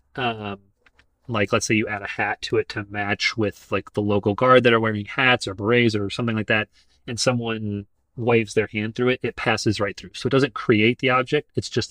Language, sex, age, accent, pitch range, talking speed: English, male, 30-49, American, 100-120 Hz, 230 wpm